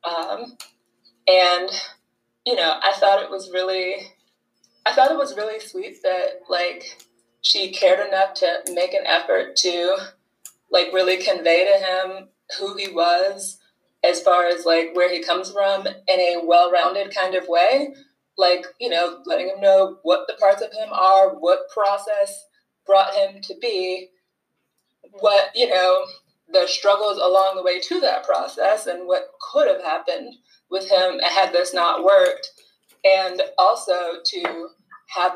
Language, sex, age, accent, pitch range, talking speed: English, female, 20-39, American, 180-275 Hz, 155 wpm